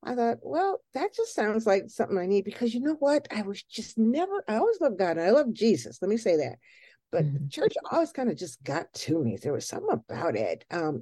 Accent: American